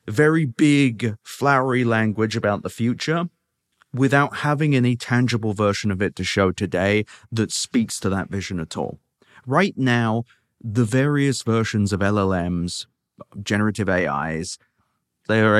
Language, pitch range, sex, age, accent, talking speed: English, 100-130 Hz, male, 30-49, British, 135 wpm